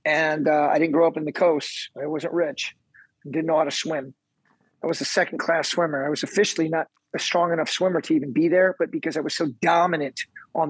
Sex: male